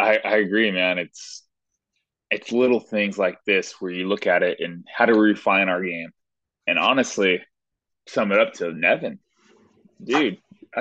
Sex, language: male, English